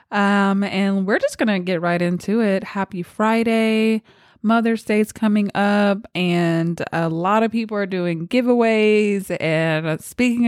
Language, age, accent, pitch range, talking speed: English, 20-39, American, 170-215 Hz, 150 wpm